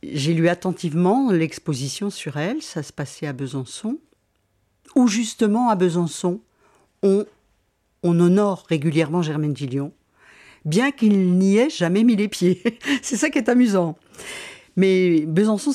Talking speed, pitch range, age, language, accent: 135 wpm, 145-205 Hz, 50-69, French, French